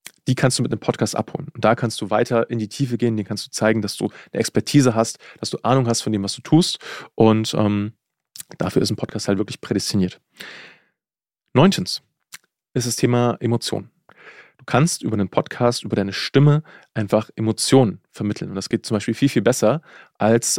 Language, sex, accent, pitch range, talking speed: German, male, German, 105-125 Hz, 200 wpm